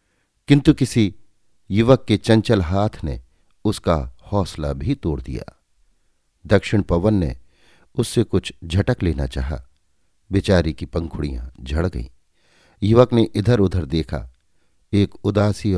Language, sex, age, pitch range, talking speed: Hindi, male, 50-69, 80-110 Hz, 120 wpm